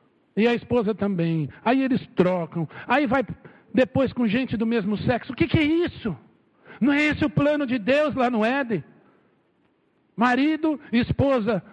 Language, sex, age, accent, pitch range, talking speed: Portuguese, male, 60-79, Brazilian, 185-255 Hz, 165 wpm